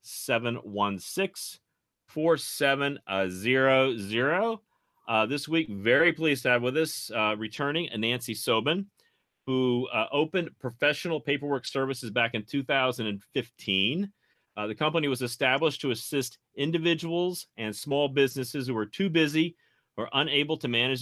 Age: 40-59